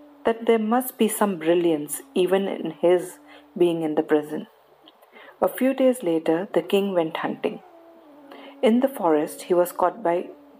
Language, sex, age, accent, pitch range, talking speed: English, female, 50-69, Indian, 170-215 Hz, 160 wpm